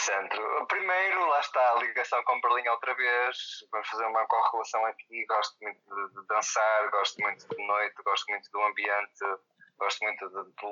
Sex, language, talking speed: male, Portuguese, 180 wpm